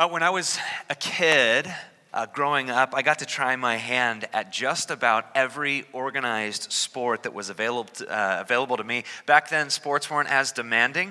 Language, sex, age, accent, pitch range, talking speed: English, male, 30-49, American, 120-170 Hz, 180 wpm